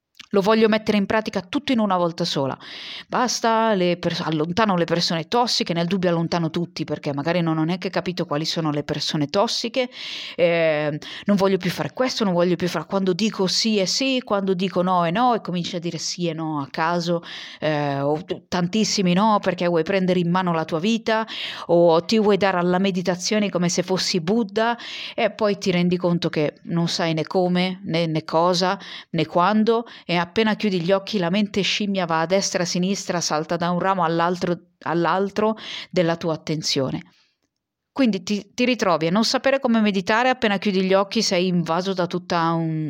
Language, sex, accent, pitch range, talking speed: Italian, female, native, 170-205 Hz, 195 wpm